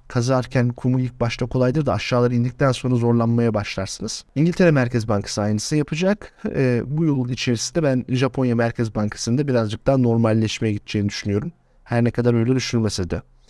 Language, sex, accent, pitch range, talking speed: Turkish, male, native, 115-135 Hz, 155 wpm